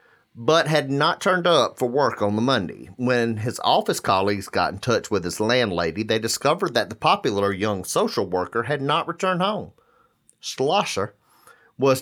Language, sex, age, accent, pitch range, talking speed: English, male, 40-59, American, 105-150 Hz, 170 wpm